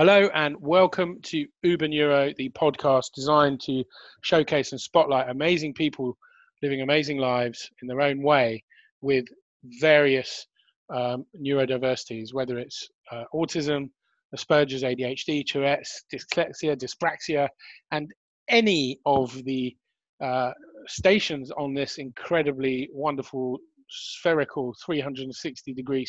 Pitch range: 130-150 Hz